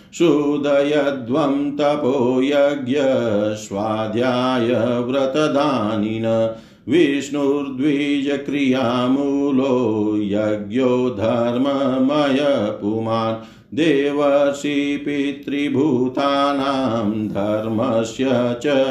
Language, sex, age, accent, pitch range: Hindi, male, 50-69, native, 110-140 Hz